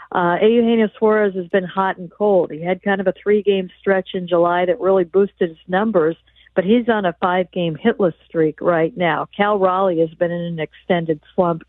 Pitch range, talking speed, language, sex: 180-215 Hz, 200 wpm, English, female